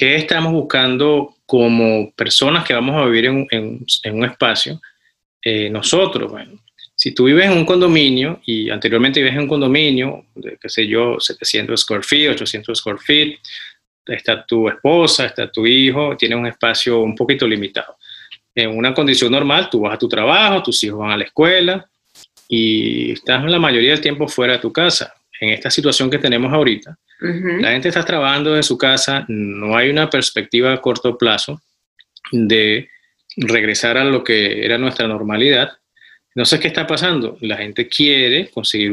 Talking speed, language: 175 wpm, English